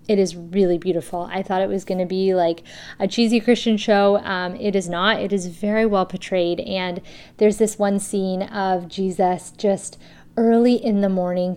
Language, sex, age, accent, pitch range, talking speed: English, female, 30-49, American, 185-215 Hz, 190 wpm